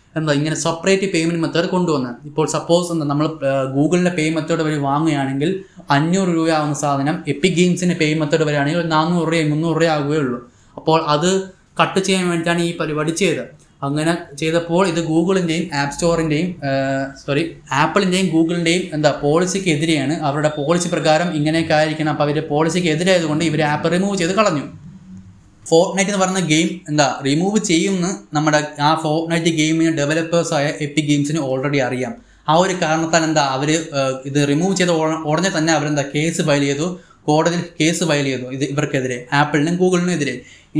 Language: Malayalam